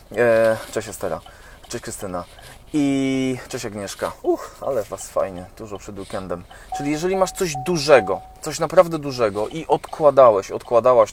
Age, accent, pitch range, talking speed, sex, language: 20-39, native, 100-130 Hz, 130 wpm, male, Polish